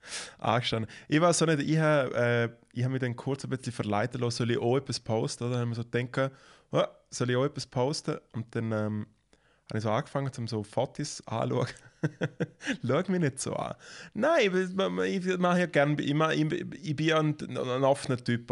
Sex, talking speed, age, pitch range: male, 205 wpm, 20-39, 120-150 Hz